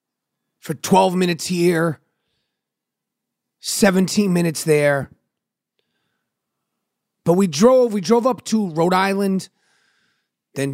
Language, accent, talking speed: English, American, 95 wpm